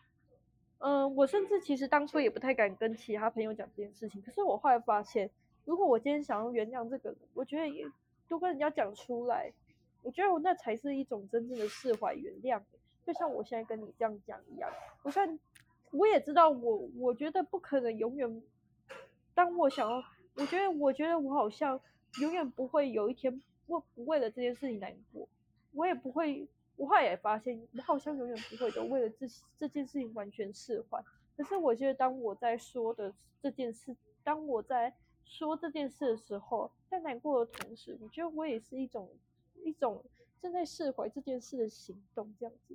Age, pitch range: 20-39, 230-305 Hz